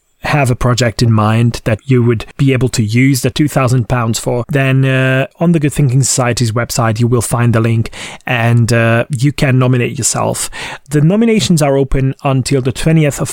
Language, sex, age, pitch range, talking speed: English, male, 30-49, 115-145 Hz, 190 wpm